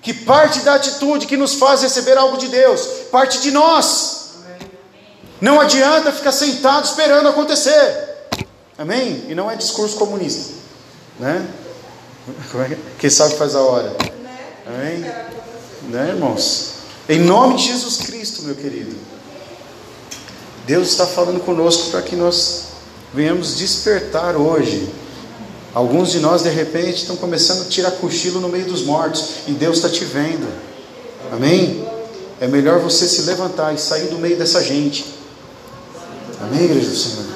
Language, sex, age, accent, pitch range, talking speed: Portuguese, male, 40-59, Brazilian, 160-250 Hz, 140 wpm